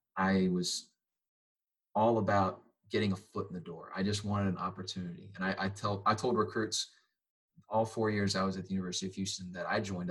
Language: English